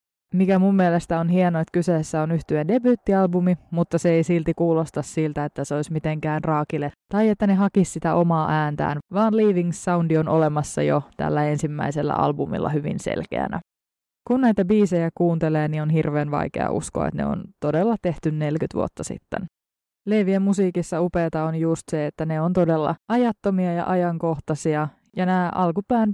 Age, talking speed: 20-39, 165 wpm